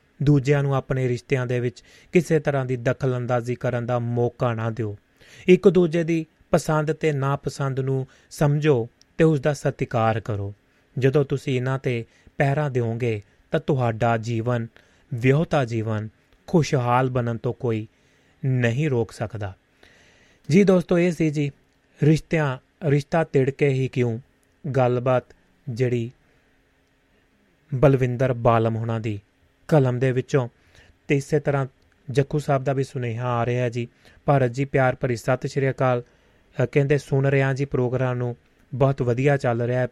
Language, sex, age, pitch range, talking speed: Punjabi, male, 30-49, 120-145 Hz, 125 wpm